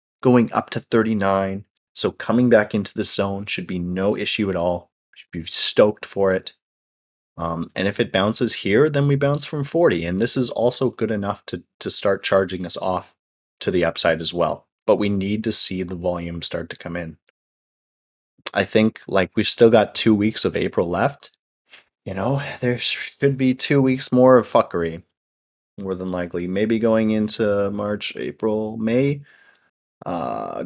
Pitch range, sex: 85-110 Hz, male